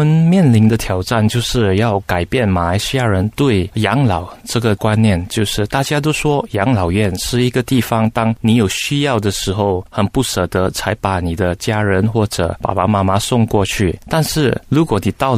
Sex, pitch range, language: male, 100-130 Hz, Chinese